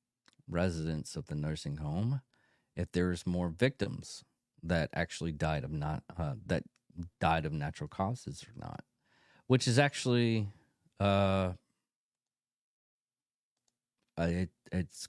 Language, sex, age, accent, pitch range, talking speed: English, male, 40-59, American, 80-115 Hz, 110 wpm